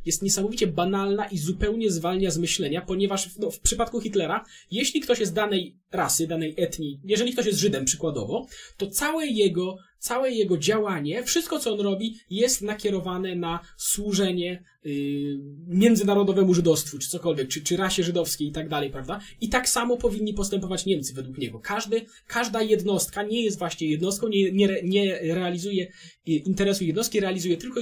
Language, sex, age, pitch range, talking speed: Polish, male, 20-39, 160-210 Hz, 160 wpm